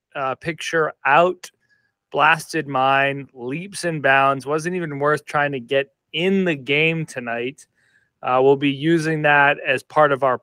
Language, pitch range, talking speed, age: English, 135-170 Hz, 155 wpm, 30-49